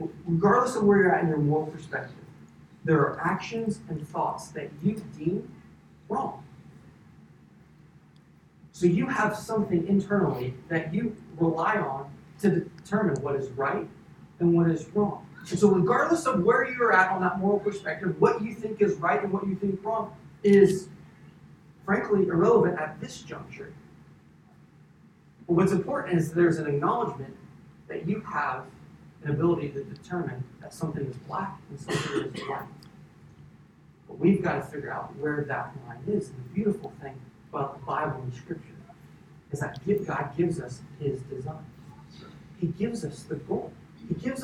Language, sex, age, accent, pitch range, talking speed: English, male, 40-59, American, 155-205 Hz, 155 wpm